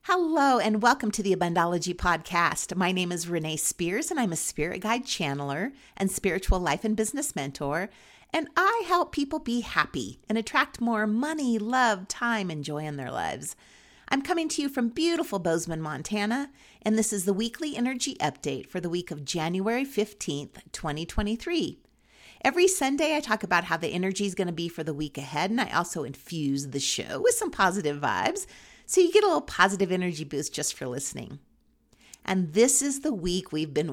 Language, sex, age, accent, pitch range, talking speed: English, female, 40-59, American, 165-255 Hz, 185 wpm